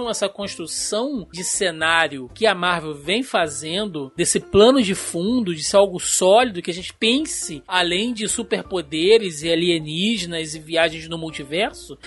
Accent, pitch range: Brazilian, 165-225 Hz